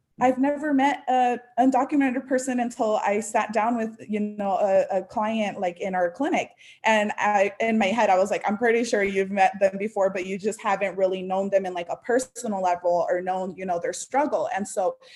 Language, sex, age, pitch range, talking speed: English, female, 20-39, 185-230 Hz, 220 wpm